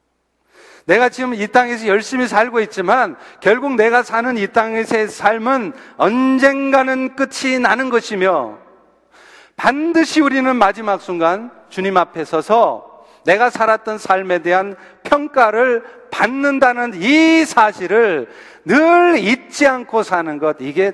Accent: native